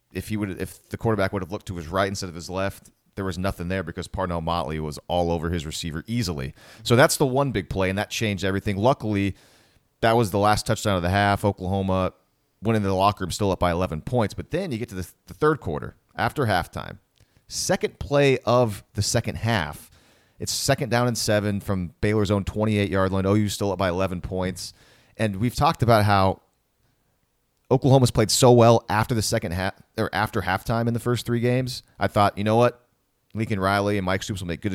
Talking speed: 220 wpm